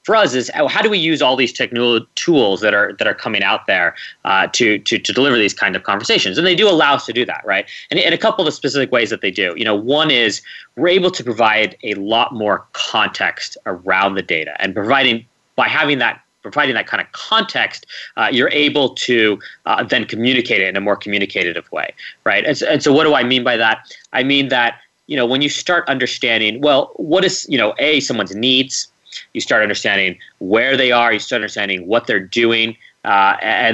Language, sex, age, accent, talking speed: English, male, 30-49, American, 225 wpm